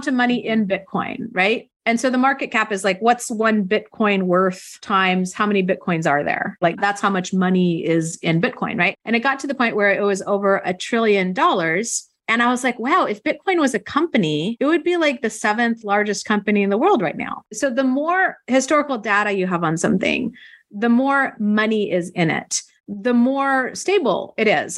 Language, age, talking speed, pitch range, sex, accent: English, 30-49, 210 wpm, 185-240 Hz, female, American